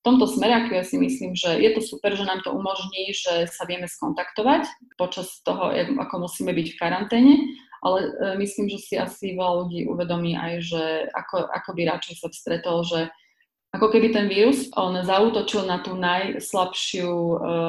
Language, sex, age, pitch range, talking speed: Slovak, female, 30-49, 170-205 Hz, 175 wpm